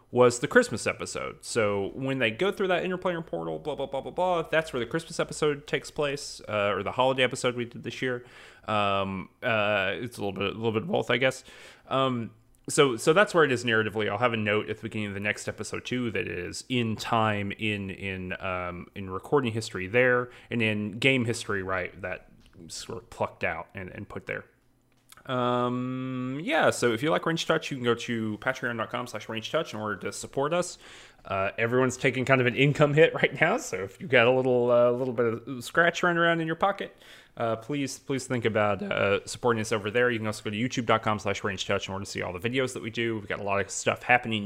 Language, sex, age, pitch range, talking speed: English, male, 30-49, 105-130 Hz, 240 wpm